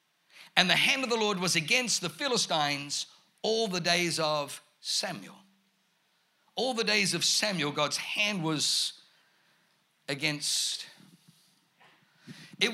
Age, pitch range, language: 50-69, 160-215 Hz, English